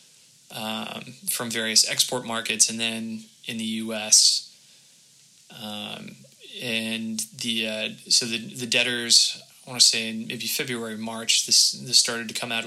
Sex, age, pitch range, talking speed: male, 20-39, 110-125 Hz, 150 wpm